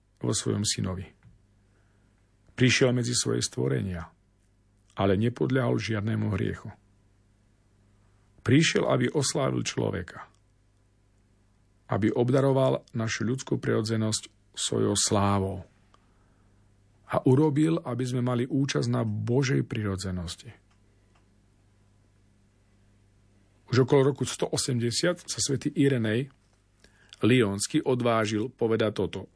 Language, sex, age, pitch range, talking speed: Slovak, male, 40-59, 100-125 Hz, 85 wpm